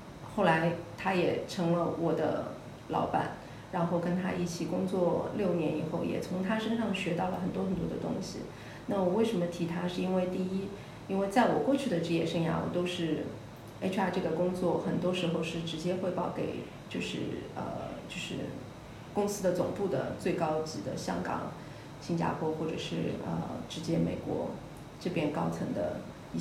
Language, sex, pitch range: Chinese, female, 165-190 Hz